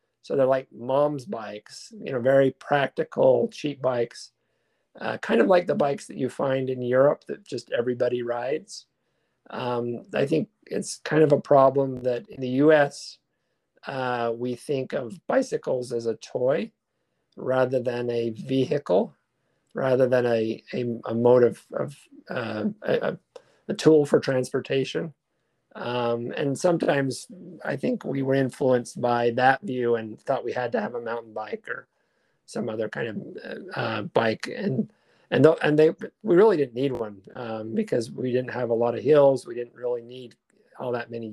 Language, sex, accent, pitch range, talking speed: English, male, American, 120-150 Hz, 170 wpm